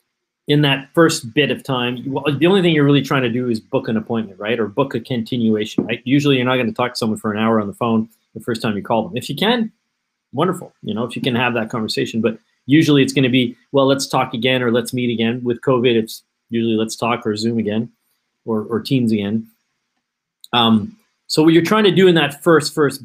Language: English